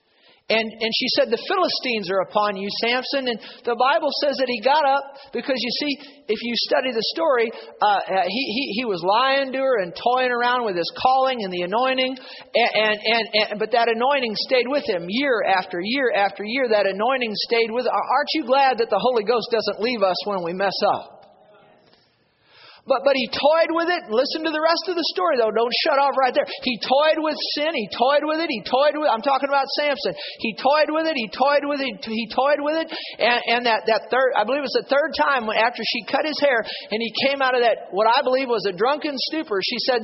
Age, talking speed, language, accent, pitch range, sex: 40-59, 230 wpm, English, American, 225-285 Hz, male